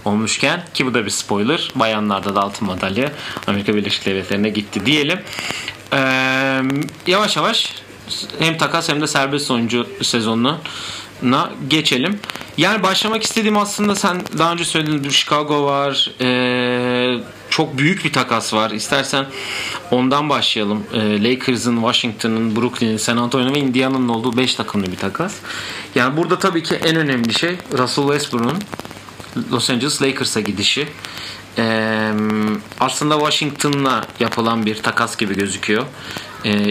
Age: 40-59